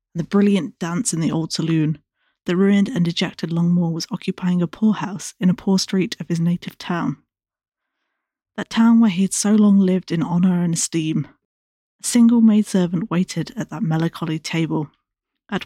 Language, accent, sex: English, British, female